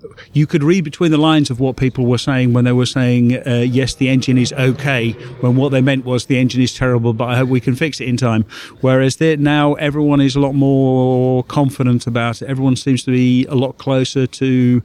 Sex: male